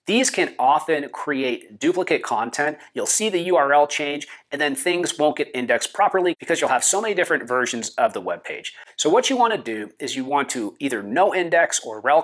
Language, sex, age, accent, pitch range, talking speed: English, male, 30-49, American, 135-205 Hz, 210 wpm